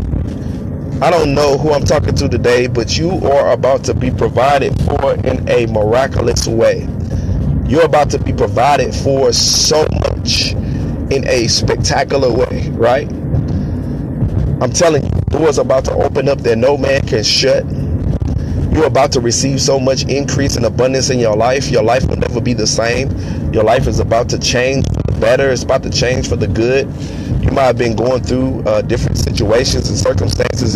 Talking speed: 180 wpm